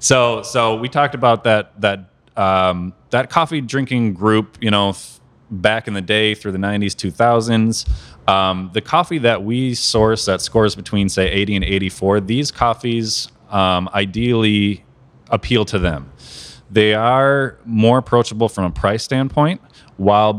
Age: 20-39